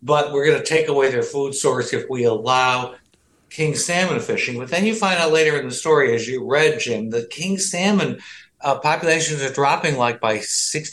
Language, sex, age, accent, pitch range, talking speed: English, male, 60-79, American, 130-175 Hz, 215 wpm